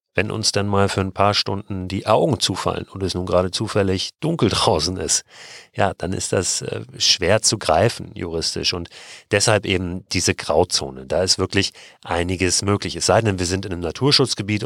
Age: 40-59